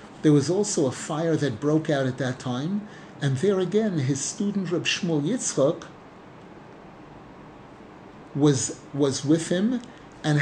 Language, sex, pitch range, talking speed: English, male, 135-170 Hz, 140 wpm